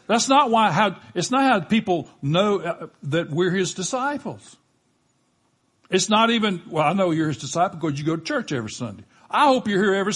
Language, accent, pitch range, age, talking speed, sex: English, American, 115-150 Hz, 60-79, 200 wpm, male